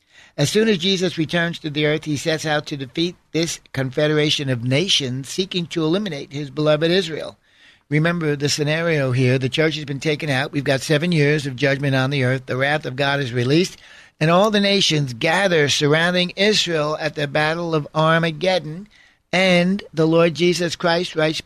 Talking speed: 185 wpm